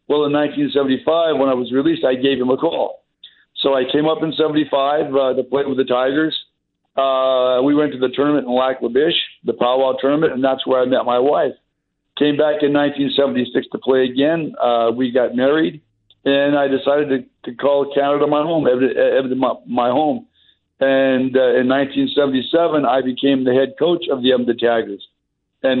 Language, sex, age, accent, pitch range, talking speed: English, male, 60-79, American, 130-155 Hz, 185 wpm